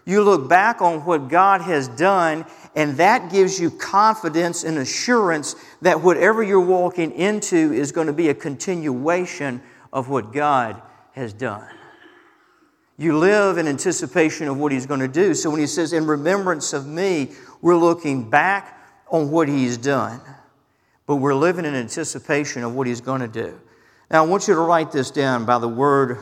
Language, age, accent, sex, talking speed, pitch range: English, 50-69, American, male, 180 wpm, 135-170 Hz